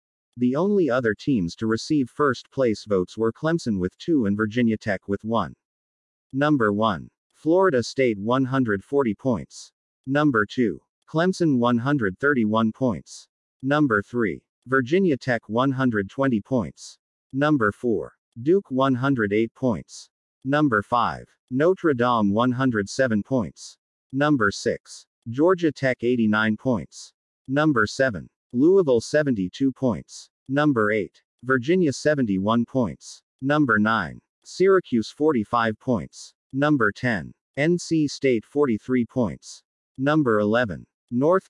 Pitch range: 110-145 Hz